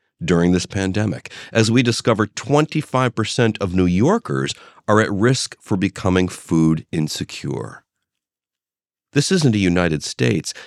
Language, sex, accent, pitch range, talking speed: English, male, American, 80-120 Hz, 125 wpm